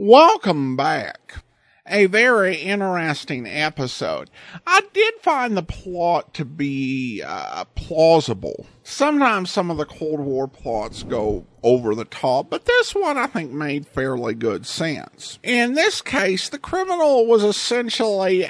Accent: American